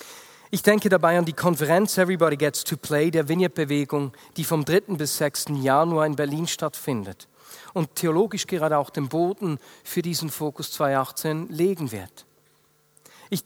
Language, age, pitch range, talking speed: German, 40-59, 150-185 Hz, 150 wpm